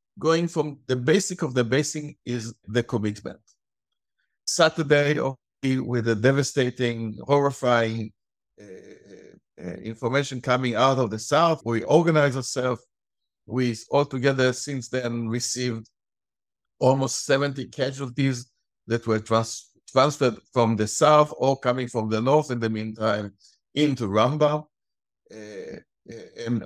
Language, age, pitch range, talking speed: English, 60-79, 115-150 Hz, 115 wpm